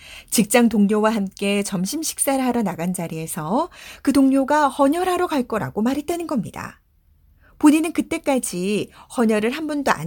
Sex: female